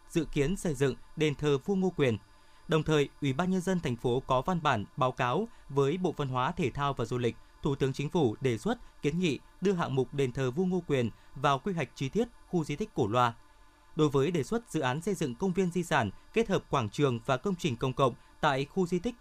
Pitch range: 130-180 Hz